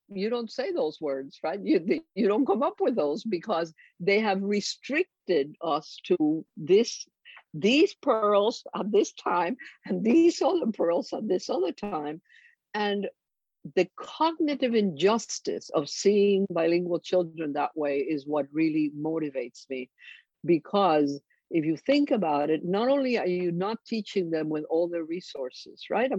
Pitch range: 160-230 Hz